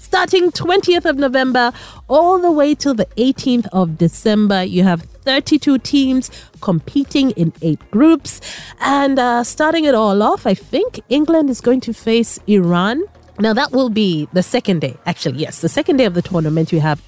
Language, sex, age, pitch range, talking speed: English, female, 30-49, 180-265 Hz, 180 wpm